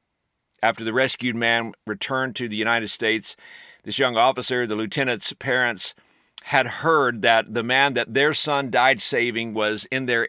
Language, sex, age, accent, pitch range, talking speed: English, male, 50-69, American, 115-135 Hz, 165 wpm